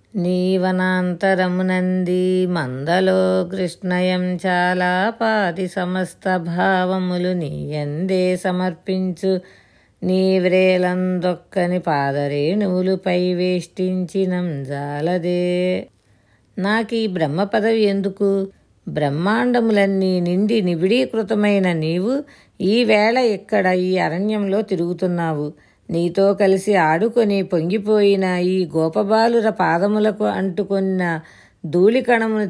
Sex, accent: female, native